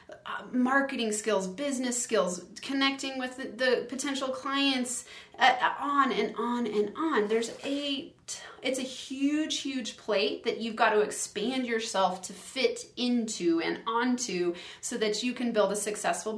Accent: American